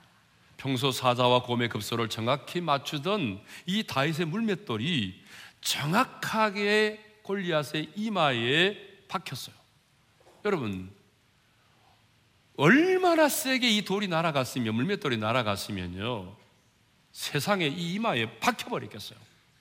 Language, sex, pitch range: Korean, male, 110-175 Hz